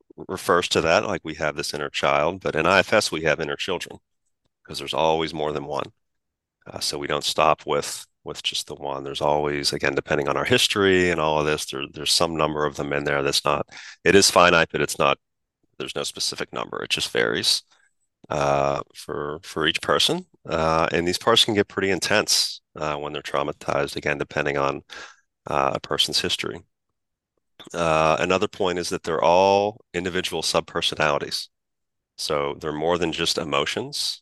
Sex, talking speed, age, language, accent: male, 180 wpm, 40-59, English, American